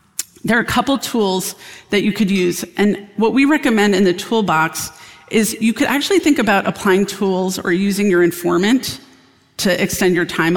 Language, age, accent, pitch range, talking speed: English, 40-59, American, 175-215 Hz, 180 wpm